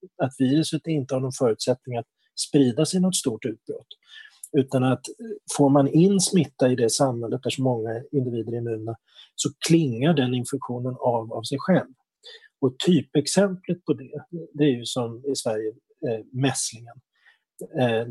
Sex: male